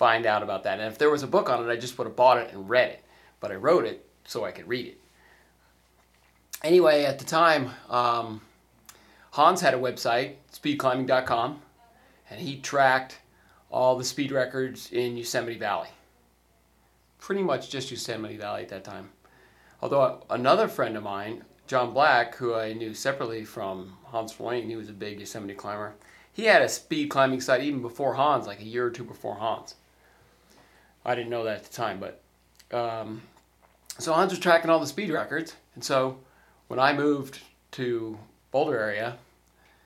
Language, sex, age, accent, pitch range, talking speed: English, male, 30-49, American, 95-130 Hz, 180 wpm